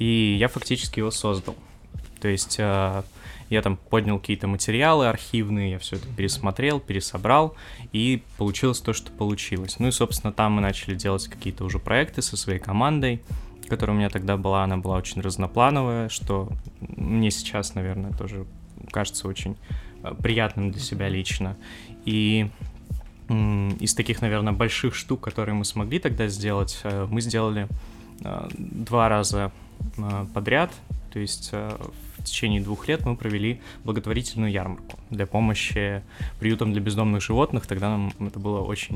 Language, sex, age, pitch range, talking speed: Russian, male, 20-39, 100-115 Hz, 145 wpm